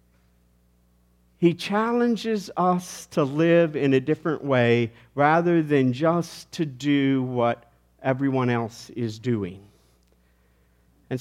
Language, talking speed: English, 105 wpm